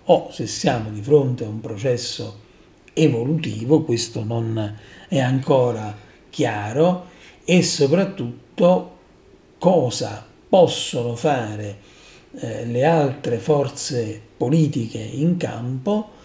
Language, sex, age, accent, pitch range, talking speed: Italian, male, 50-69, native, 115-155 Hz, 95 wpm